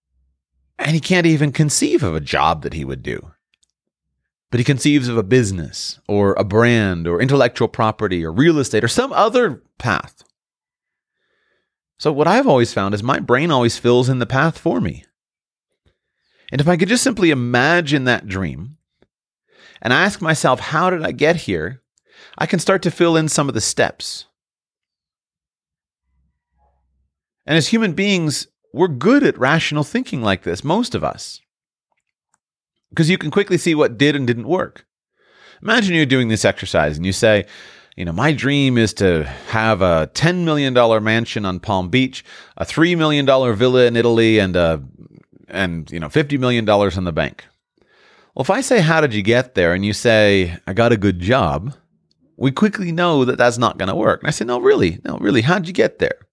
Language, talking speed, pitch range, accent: English, 185 wpm, 105-165 Hz, American